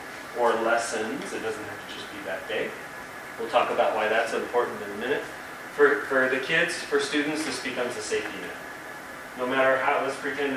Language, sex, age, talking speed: English, male, 30-49, 200 wpm